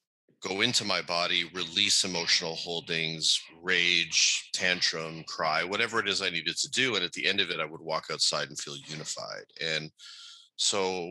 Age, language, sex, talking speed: 30-49, English, male, 175 wpm